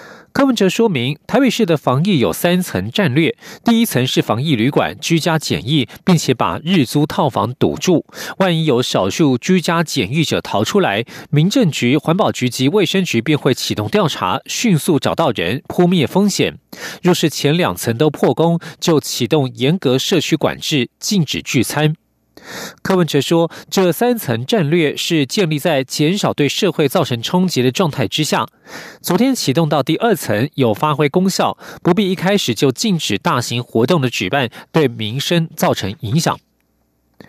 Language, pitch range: German, 135-185 Hz